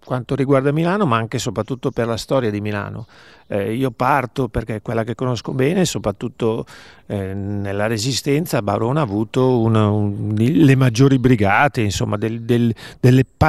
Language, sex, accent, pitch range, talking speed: Italian, male, native, 105-135 Hz, 160 wpm